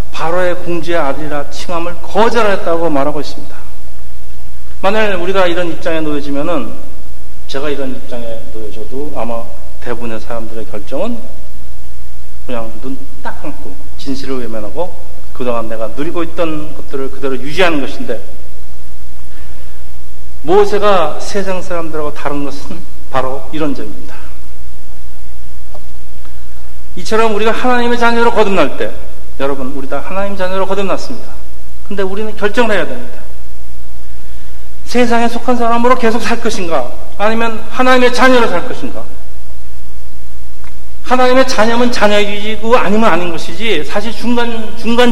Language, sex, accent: Korean, male, native